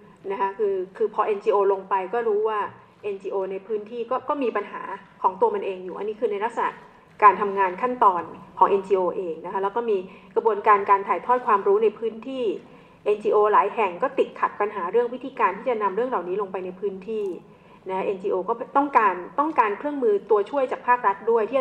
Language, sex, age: Thai, female, 30-49